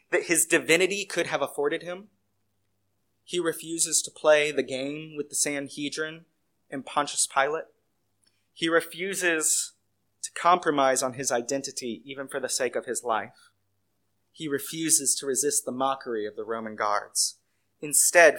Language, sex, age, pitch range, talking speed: English, male, 30-49, 105-165 Hz, 145 wpm